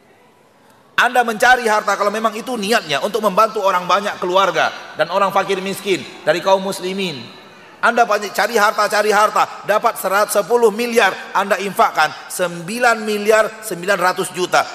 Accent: native